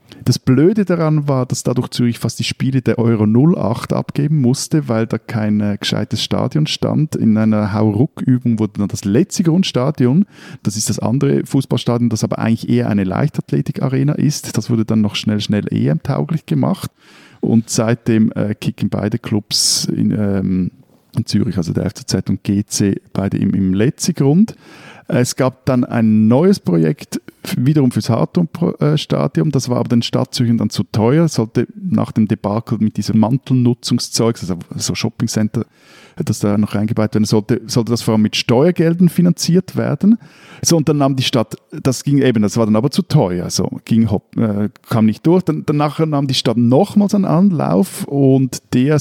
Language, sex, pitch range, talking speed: German, male, 110-150 Hz, 170 wpm